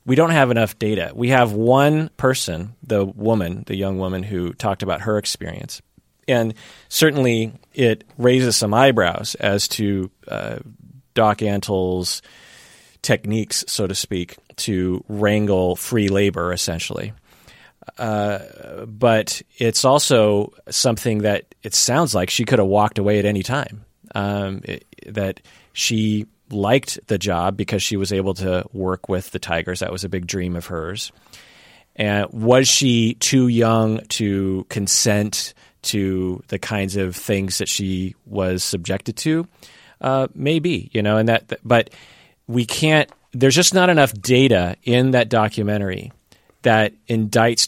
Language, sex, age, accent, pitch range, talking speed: English, male, 30-49, American, 95-120 Hz, 145 wpm